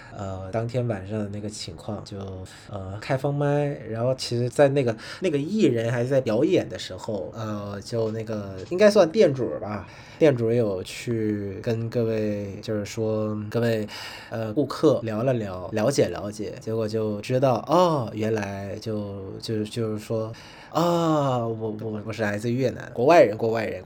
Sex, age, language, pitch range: male, 20-39, Vietnamese, 105-130 Hz